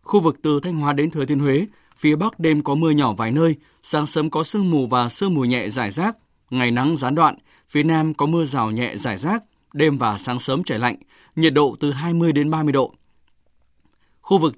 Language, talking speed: Vietnamese, 225 wpm